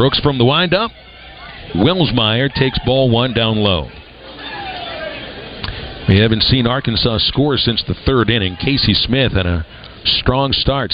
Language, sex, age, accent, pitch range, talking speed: English, male, 50-69, American, 105-135 Hz, 135 wpm